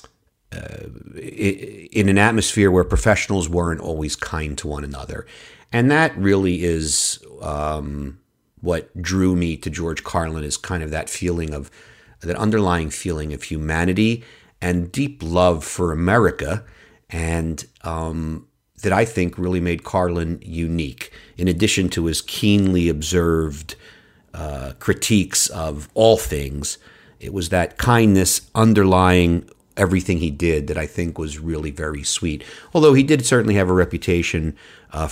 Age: 50-69